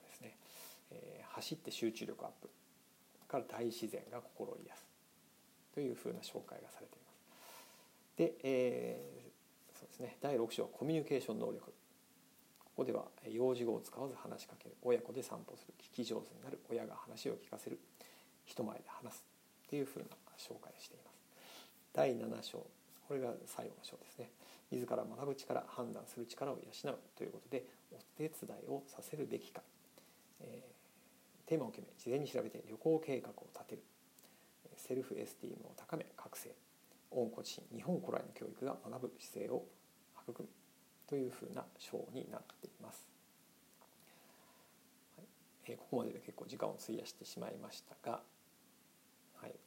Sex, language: male, Japanese